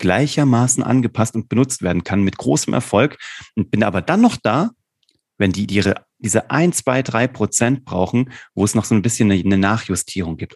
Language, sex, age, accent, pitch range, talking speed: German, male, 30-49, German, 100-130 Hz, 180 wpm